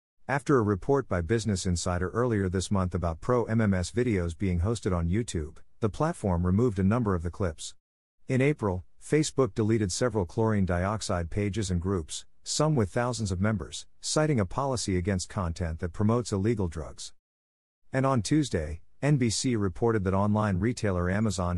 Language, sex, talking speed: English, male, 160 wpm